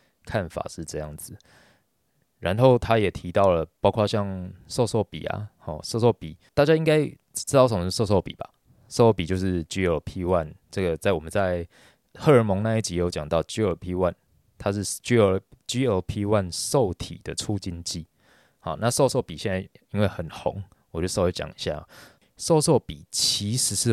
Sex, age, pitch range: male, 20-39, 85-110 Hz